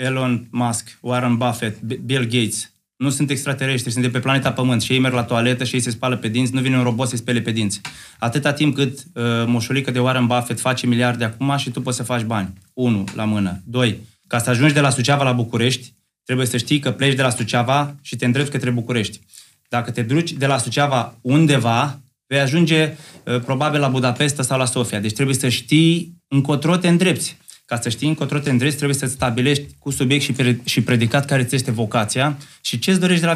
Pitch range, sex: 120-145 Hz, male